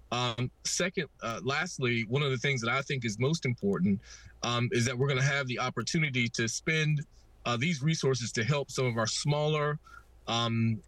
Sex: male